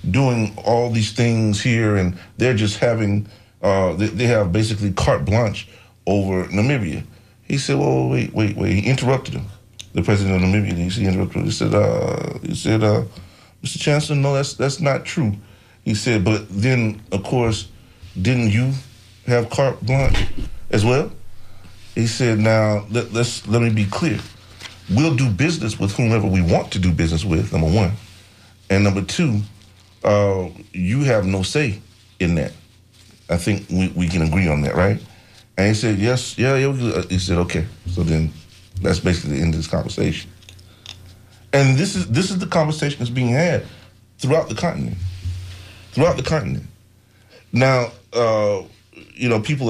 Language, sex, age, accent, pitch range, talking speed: English, male, 40-59, American, 95-120 Hz, 170 wpm